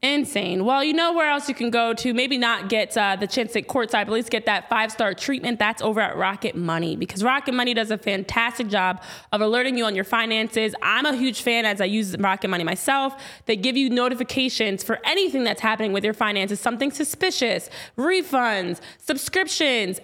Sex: female